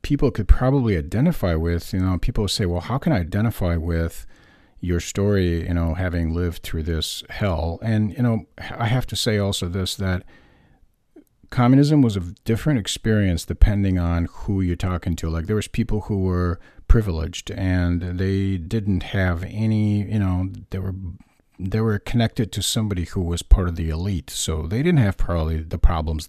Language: English